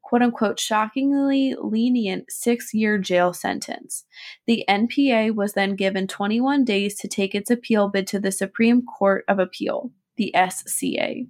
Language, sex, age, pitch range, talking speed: English, female, 20-39, 195-245 Hz, 140 wpm